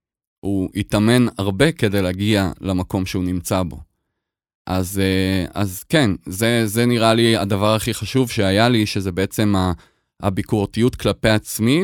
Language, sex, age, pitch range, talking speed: Hebrew, male, 20-39, 95-125 Hz, 130 wpm